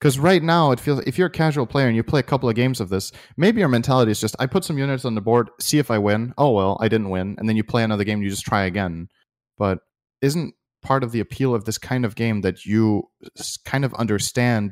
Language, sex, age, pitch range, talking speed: English, male, 30-49, 105-130 Hz, 270 wpm